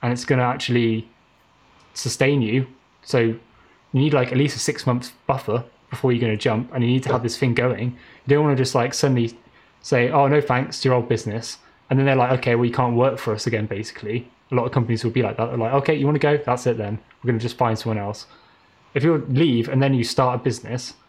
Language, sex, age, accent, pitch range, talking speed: English, male, 10-29, British, 115-130 Hz, 260 wpm